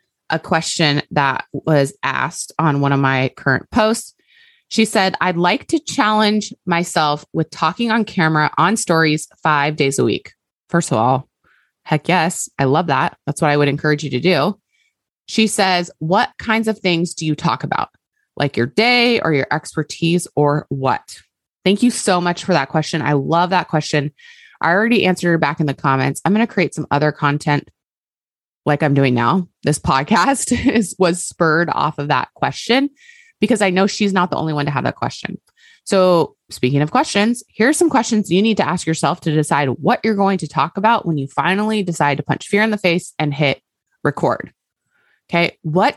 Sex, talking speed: female, 195 wpm